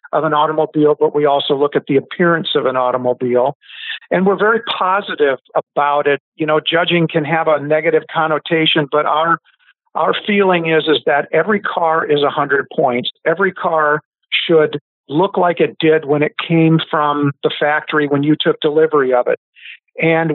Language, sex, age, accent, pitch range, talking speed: English, male, 50-69, American, 145-170 Hz, 175 wpm